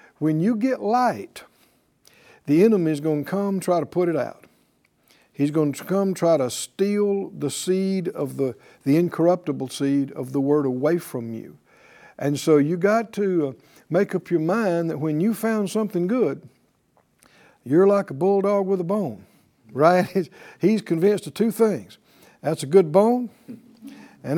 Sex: male